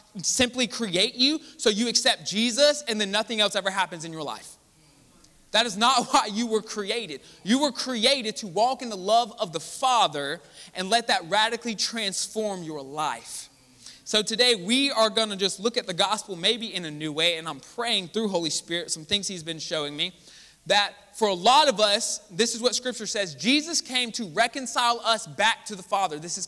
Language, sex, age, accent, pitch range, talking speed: English, male, 20-39, American, 195-245 Hz, 205 wpm